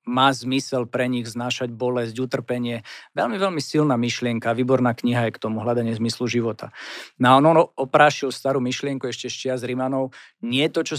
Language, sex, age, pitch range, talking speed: Slovak, male, 50-69, 120-140 Hz, 180 wpm